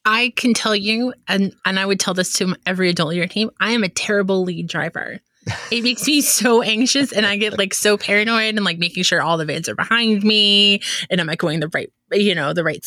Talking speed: 250 wpm